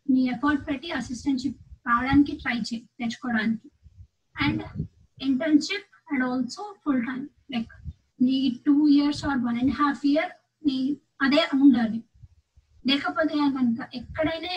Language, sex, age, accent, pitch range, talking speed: Telugu, female, 20-39, native, 240-290 Hz, 115 wpm